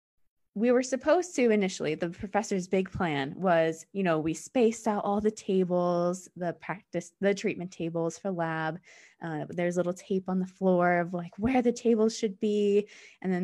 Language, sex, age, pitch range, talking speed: English, female, 20-39, 170-215 Hz, 185 wpm